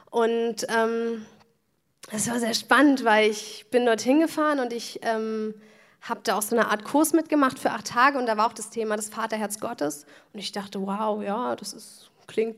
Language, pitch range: German, 220-255 Hz